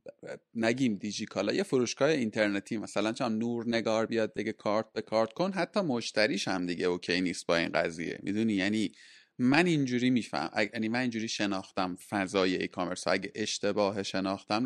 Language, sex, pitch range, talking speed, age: Persian, male, 105-150 Hz, 160 wpm, 30-49